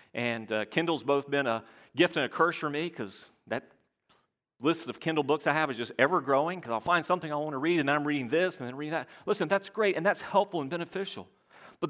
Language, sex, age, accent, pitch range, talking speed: English, male, 40-59, American, 145-190 Hz, 245 wpm